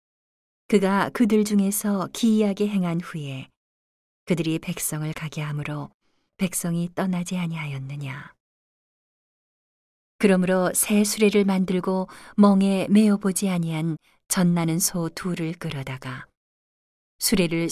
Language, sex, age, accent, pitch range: Korean, female, 40-59, native, 160-205 Hz